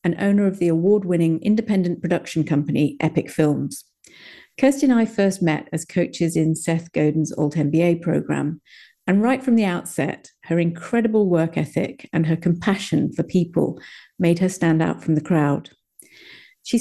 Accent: British